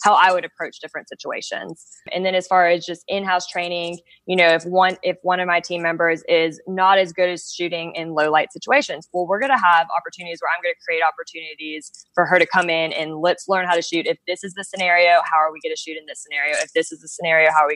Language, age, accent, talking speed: English, 20-39, American, 255 wpm